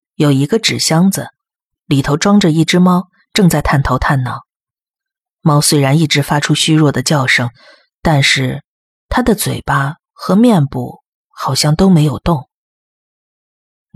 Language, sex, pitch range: Chinese, female, 130-165 Hz